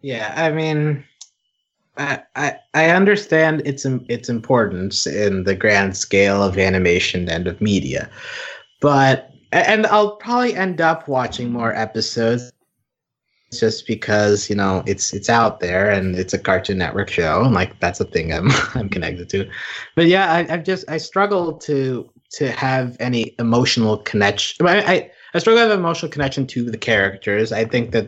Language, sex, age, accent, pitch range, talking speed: English, male, 30-49, American, 110-175 Hz, 160 wpm